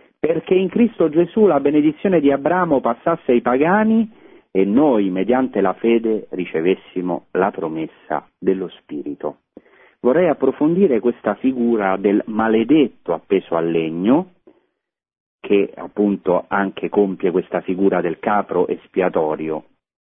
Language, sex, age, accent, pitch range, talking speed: Italian, male, 40-59, native, 85-115 Hz, 115 wpm